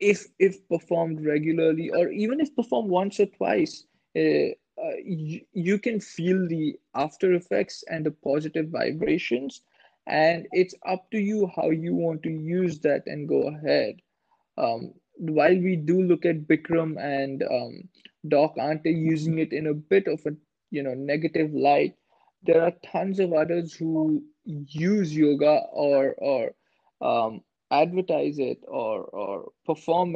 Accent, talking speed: Indian, 150 wpm